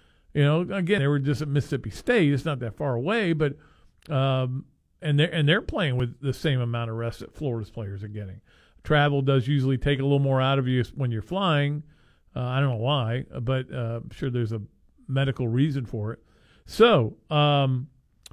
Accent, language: American, English